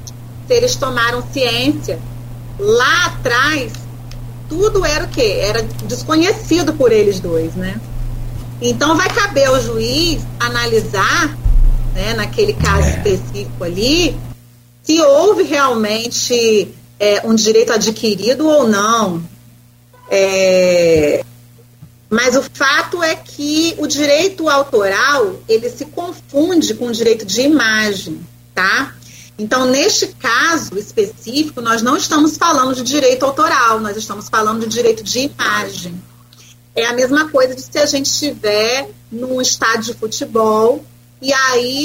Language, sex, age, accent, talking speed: Portuguese, female, 30-49, Brazilian, 125 wpm